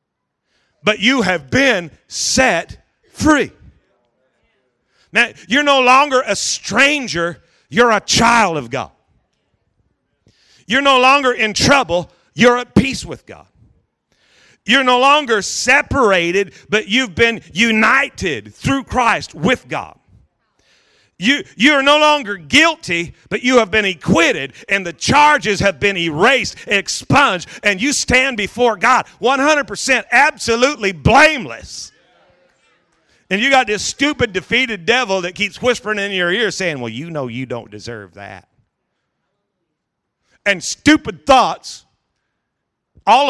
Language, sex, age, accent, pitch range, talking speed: English, male, 40-59, American, 175-255 Hz, 125 wpm